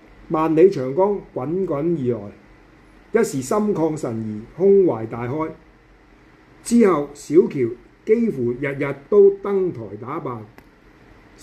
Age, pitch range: 50-69, 130-190 Hz